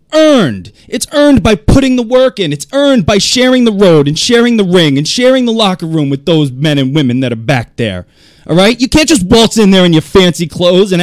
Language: English